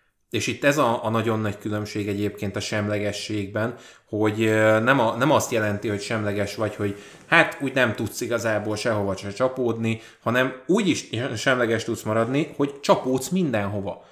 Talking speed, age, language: 160 wpm, 20-39, Hungarian